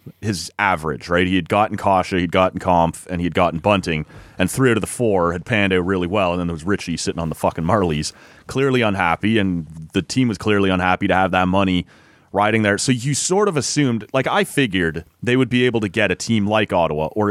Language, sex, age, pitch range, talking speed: English, male, 30-49, 90-115 Hz, 235 wpm